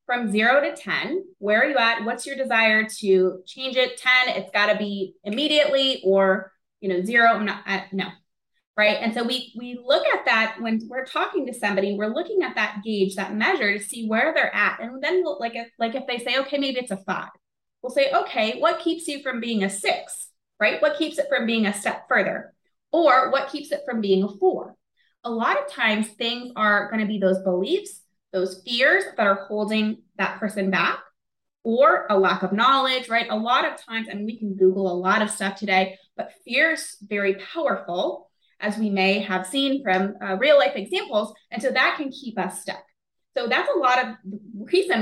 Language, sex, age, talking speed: English, female, 20-39, 210 wpm